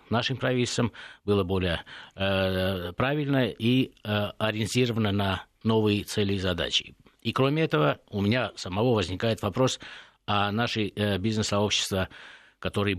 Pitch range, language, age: 95-125 Hz, Russian, 50-69